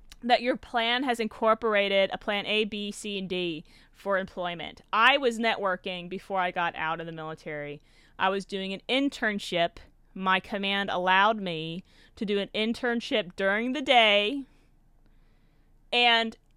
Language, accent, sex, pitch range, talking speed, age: English, American, female, 180-230 Hz, 150 wpm, 30-49